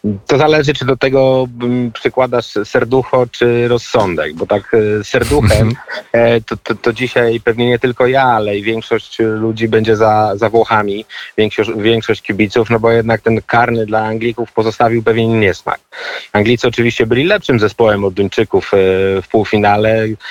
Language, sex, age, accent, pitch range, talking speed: Polish, male, 30-49, native, 105-120 Hz, 150 wpm